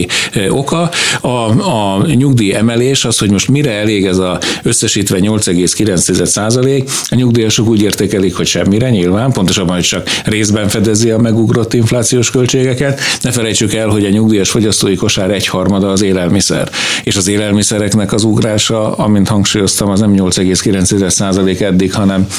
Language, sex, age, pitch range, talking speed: Hungarian, male, 60-79, 95-115 Hz, 145 wpm